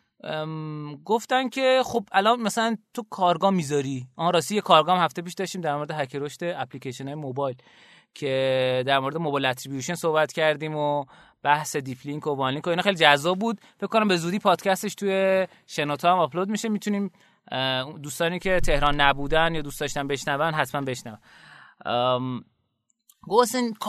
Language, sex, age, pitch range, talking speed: Persian, male, 20-39, 150-205 Hz, 145 wpm